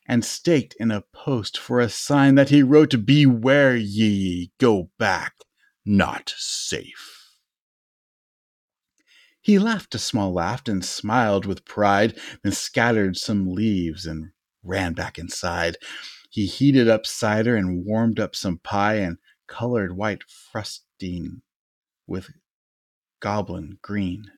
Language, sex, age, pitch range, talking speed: English, male, 30-49, 95-120 Hz, 125 wpm